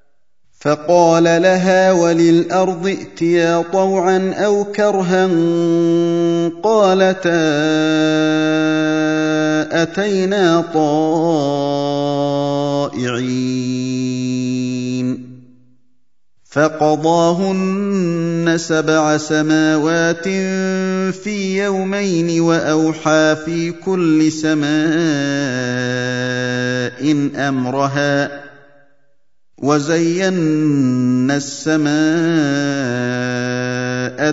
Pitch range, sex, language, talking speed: 130-165 Hz, male, Indonesian, 35 wpm